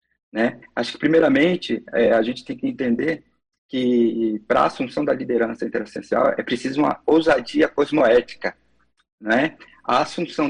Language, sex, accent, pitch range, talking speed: Portuguese, male, Brazilian, 140-200 Hz, 130 wpm